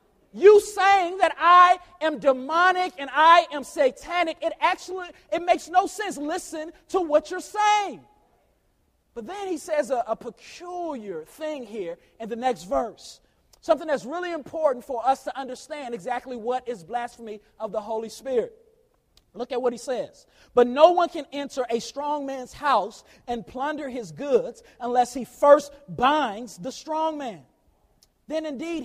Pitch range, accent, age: 255-340 Hz, American, 40-59